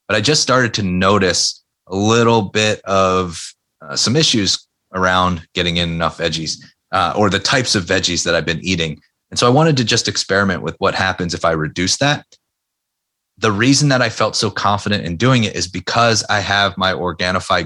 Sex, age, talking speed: male, 30-49, 195 wpm